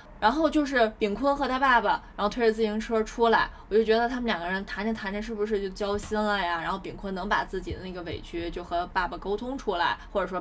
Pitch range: 190-230 Hz